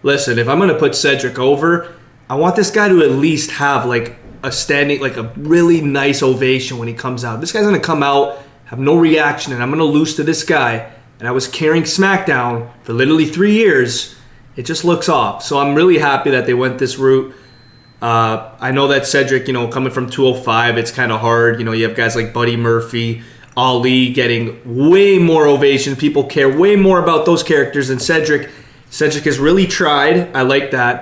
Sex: male